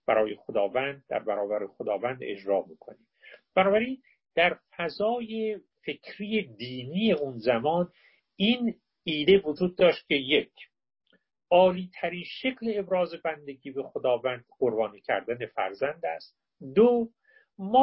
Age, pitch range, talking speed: 50-69, 140-220 Hz, 110 wpm